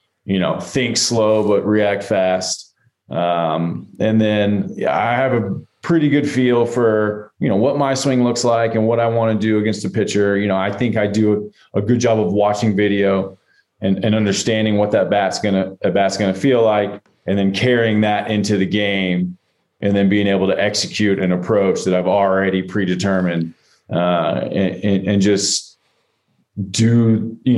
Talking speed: 185 wpm